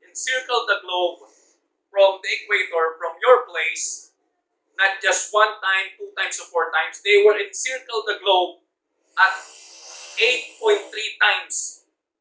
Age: 20-39